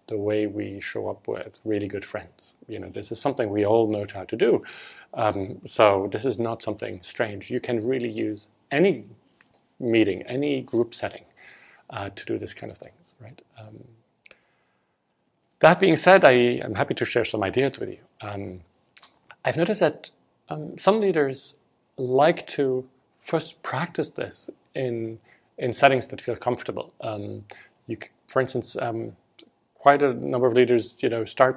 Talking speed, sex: 165 wpm, male